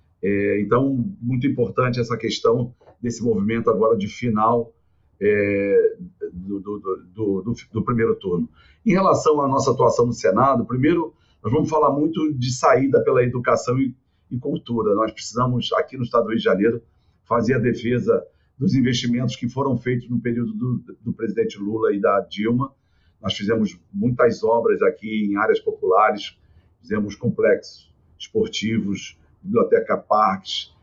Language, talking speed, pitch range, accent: Portuguese, 145 wpm, 100-125 Hz, Brazilian